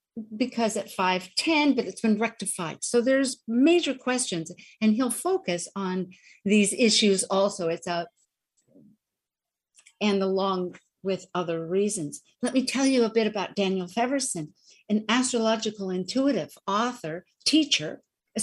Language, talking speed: English, 130 wpm